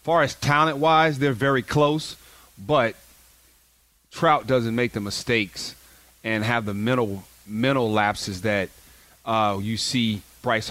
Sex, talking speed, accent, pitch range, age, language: male, 130 wpm, American, 110-155 Hz, 30-49, English